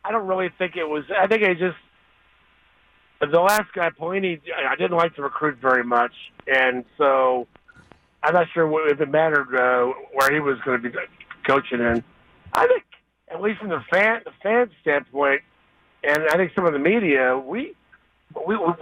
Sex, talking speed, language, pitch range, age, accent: male, 190 wpm, English, 140-180 Hz, 60-79, American